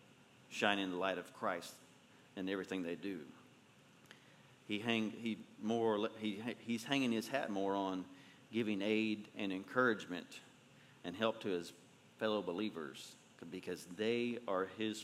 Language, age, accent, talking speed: English, 40-59, American, 135 wpm